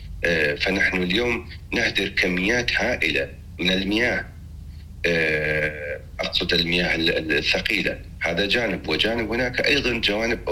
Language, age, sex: Arabic, 40-59, male